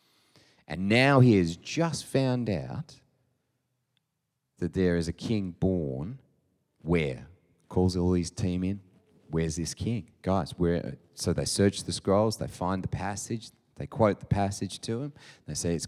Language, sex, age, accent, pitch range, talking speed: English, male, 30-49, Australian, 90-135 Hz, 160 wpm